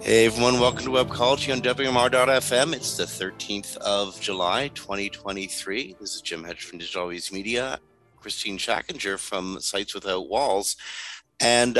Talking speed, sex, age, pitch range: 140 wpm, male, 50-69, 105-135 Hz